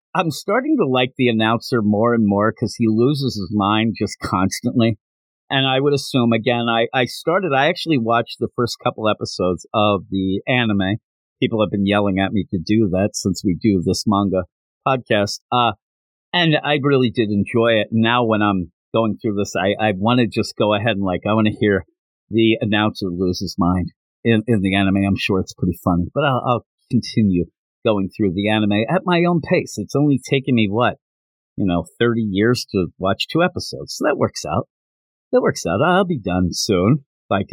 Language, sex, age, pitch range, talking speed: English, male, 50-69, 95-130 Hz, 200 wpm